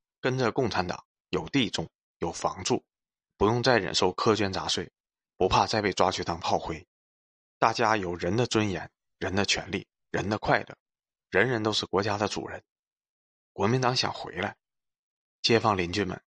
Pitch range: 90-115 Hz